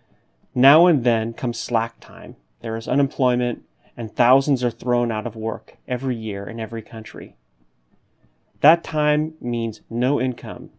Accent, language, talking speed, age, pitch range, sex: American, English, 145 wpm, 30-49, 120-155 Hz, male